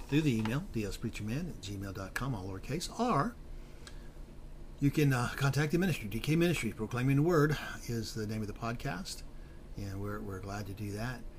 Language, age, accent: English, 50-69, American